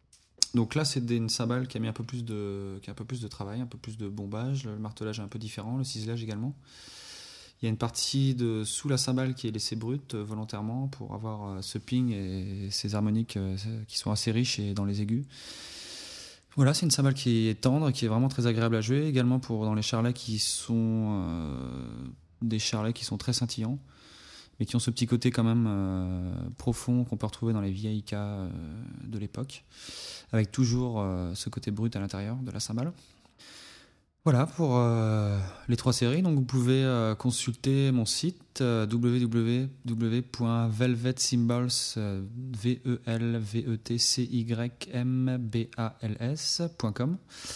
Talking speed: 170 wpm